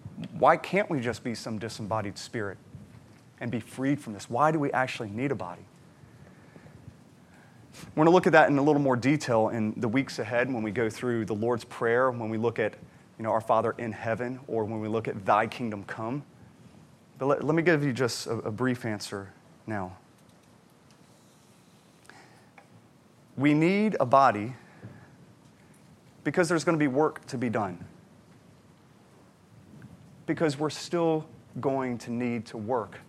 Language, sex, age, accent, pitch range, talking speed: English, male, 30-49, American, 110-145 Hz, 165 wpm